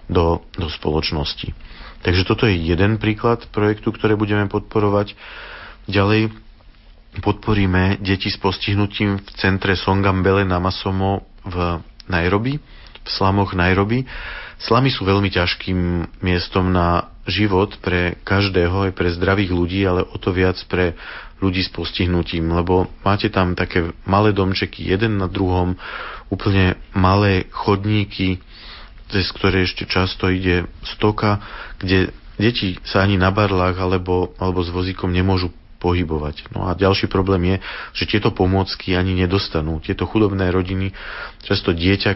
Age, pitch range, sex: 40-59, 90-100 Hz, male